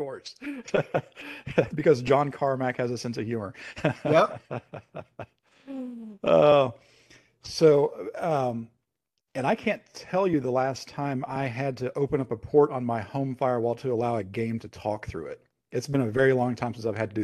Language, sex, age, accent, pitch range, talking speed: English, male, 50-69, American, 115-135 Hz, 180 wpm